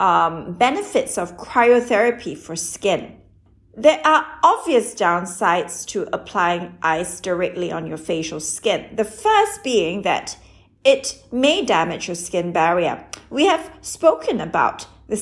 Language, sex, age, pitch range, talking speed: English, female, 40-59, 175-260 Hz, 130 wpm